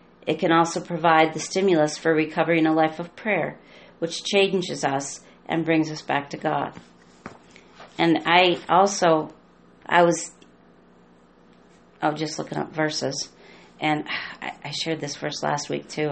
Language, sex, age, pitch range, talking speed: English, female, 40-59, 140-170 Hz, 155 wpm